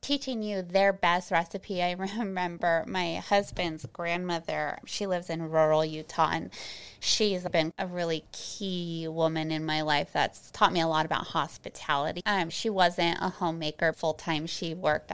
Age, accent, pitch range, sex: 20-39, American, 160-190 Hz, female